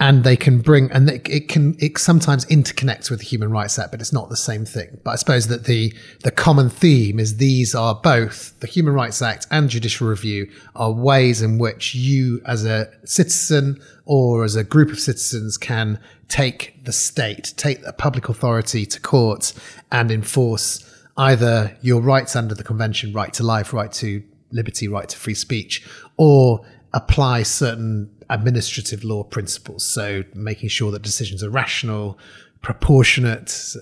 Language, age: English, 30-49